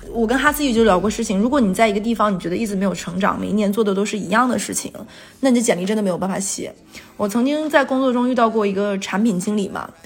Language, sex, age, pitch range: Chinese, female, 20-39, 200-260 Hz